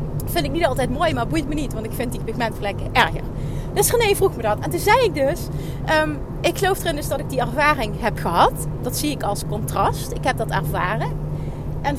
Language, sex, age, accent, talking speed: Dutch, female, 30-49, Dutch, 230 wpm